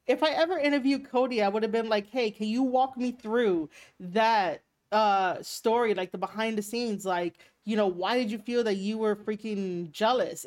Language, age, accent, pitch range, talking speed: English, 30-49, American, 195-255 Hz, 205 wpm